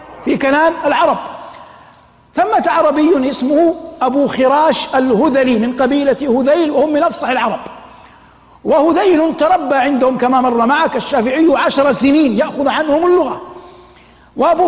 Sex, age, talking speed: male, 50-69, 120 wpm